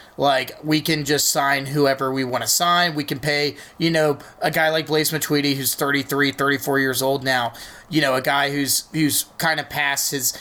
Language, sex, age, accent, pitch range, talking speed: English, male, 30-49, American, 140-170 Hz, 210 wpm